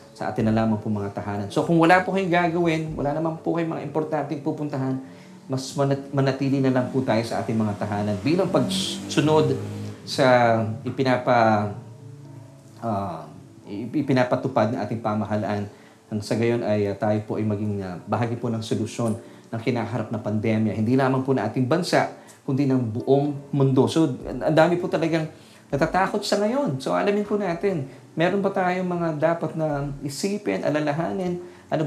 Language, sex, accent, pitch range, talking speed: Filipino, male, native, 115-160 Hz, 160 wpm